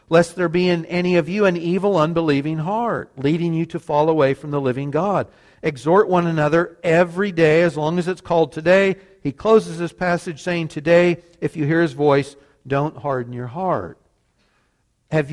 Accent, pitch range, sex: American, 145-180 Hz, male